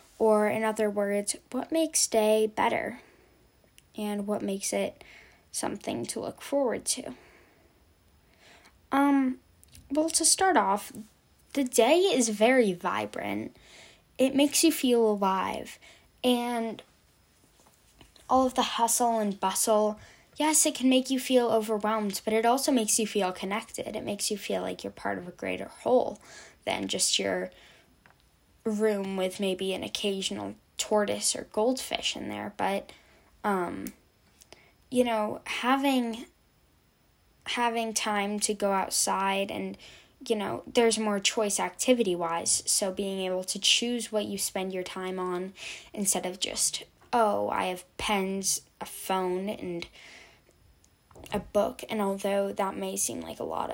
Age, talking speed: 10-29, 140 wpm